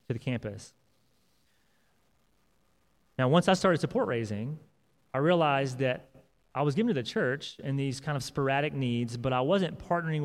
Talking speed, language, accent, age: 165 wpm, English, American, 30-49